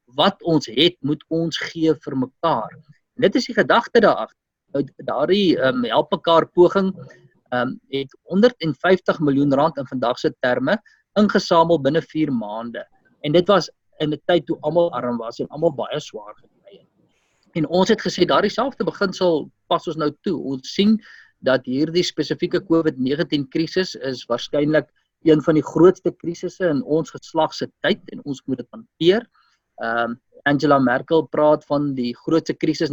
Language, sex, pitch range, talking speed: English, male, 130-170 Hz, 165 wpm